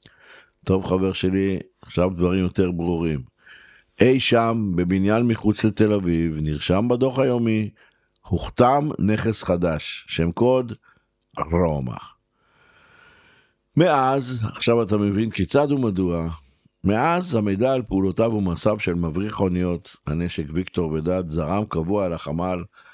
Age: 60-79